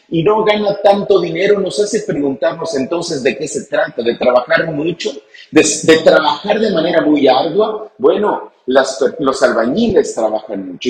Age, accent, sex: 40-59, Mexican, male